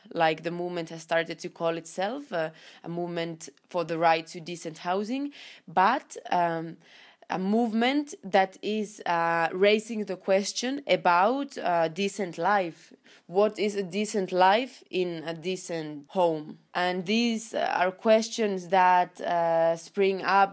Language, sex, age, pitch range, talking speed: English, female, 20-39, 170-205 Hz, 140 wpm